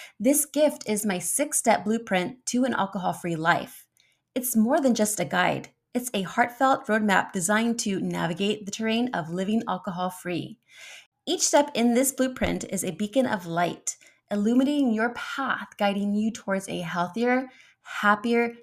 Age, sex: 20-39, female